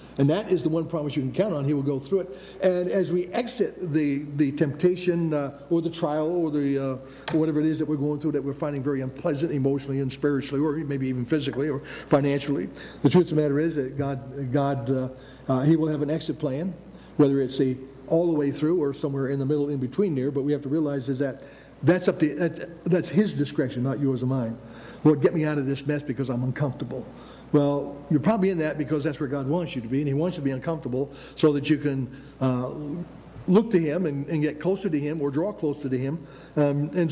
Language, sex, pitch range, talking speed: English, male, 135-165 Hz, 245 wpm